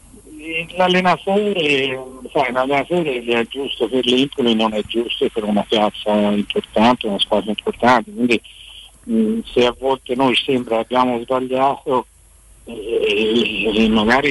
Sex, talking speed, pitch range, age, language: male, 110 wpm, 105-125 Hz, 60-79, Italian